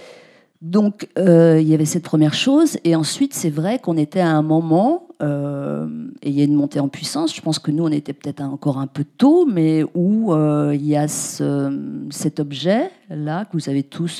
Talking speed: 210 wpm